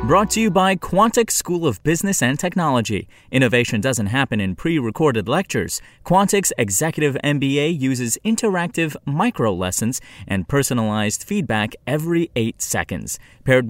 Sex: male